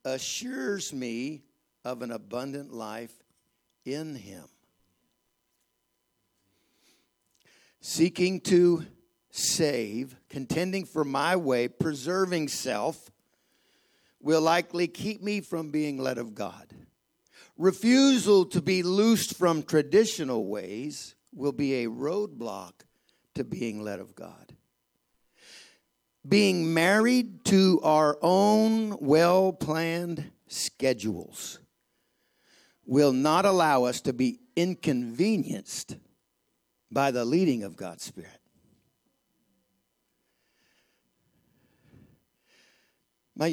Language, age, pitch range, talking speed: English, 60-79, 125-180 Hz, 90 wpm